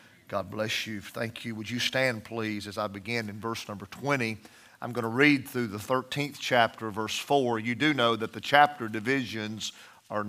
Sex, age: male, 50-69